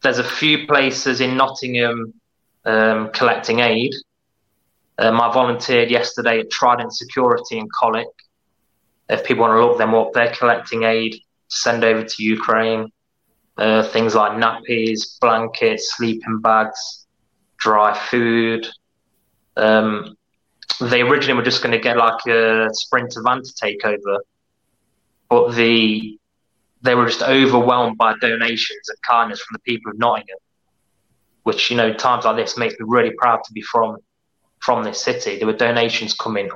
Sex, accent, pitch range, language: male, British, 110-120 Hz, English